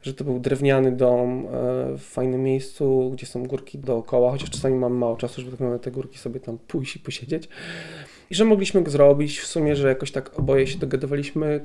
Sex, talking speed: male, 195 wpm